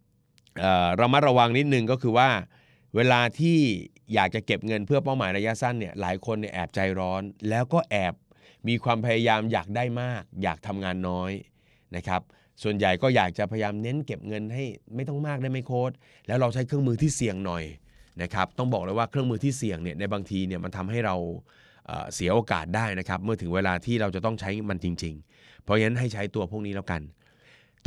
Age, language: 20-39, Thai